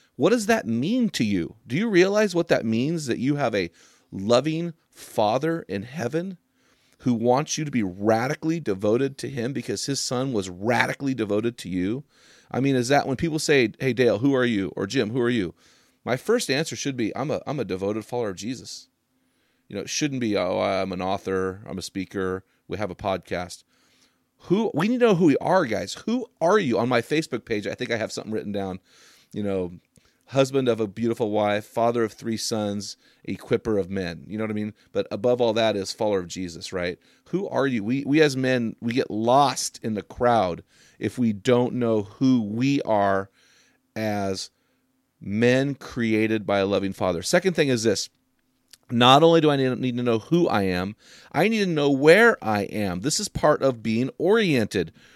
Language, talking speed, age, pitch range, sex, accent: English, 205 wpm, 30-49, 105-150 Hz, male, American